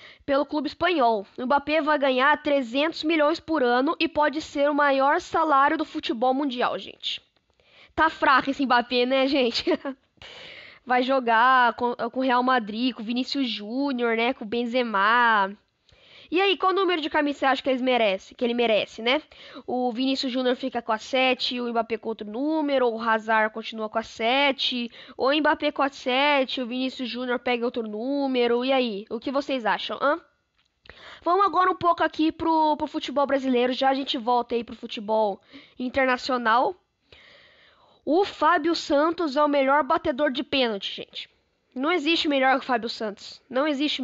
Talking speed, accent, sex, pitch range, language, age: 175 wpm, Brazilian, female, 245-310 Hz, Portuguese, 10-29